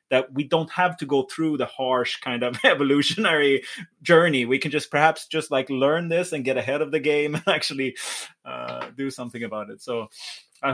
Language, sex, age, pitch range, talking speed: English, male, 30-49, 120-160 Hz, 200 wpm